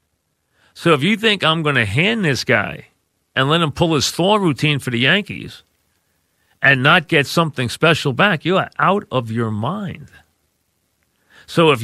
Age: 40-59